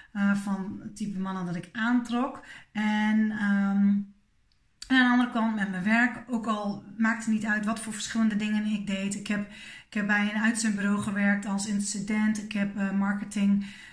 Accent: Dutch